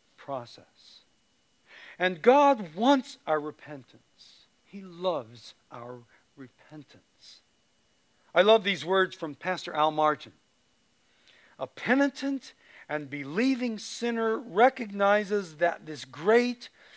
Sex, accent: male, American